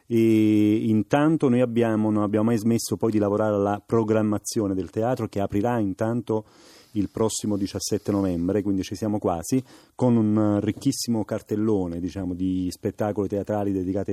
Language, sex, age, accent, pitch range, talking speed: Italian, male, 40-59, native, 100-115 Hz, 150 wpm